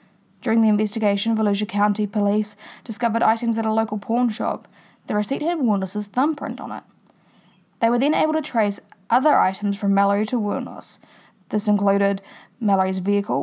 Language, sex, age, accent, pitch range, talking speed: English, female, 20-39, Australian, 195-230 Hz, 160 wpm